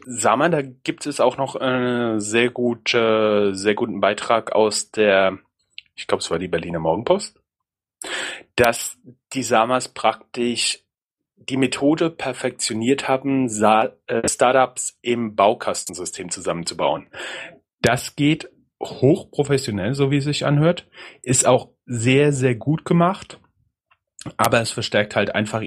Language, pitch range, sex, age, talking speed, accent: German, 105-135 Hz, male, 30-49, 120 wpm, German